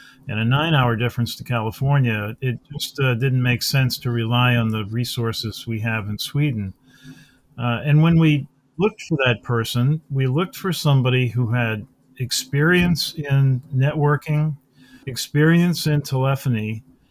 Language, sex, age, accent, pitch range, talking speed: English, male, 50-69, American, 120-145 Hz, 145 wpm